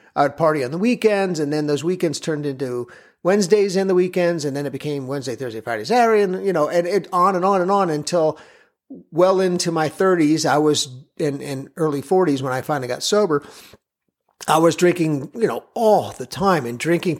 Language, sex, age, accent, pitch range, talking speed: English, male, 50-69, American, 150-195 Hz, 210 wpm